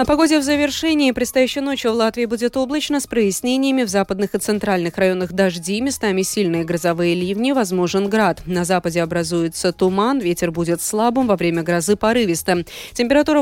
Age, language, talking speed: 20-39, Russian, 160 wpm